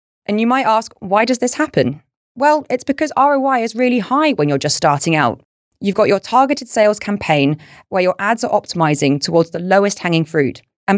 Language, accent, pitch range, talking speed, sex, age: English, British, 155-215 Hz, 200 wpm, female, 20-39